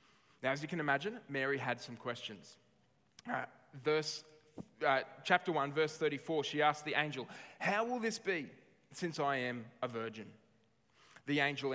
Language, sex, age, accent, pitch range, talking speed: English, male, 20-39, Australian, 130-160 Hz, 160 wpm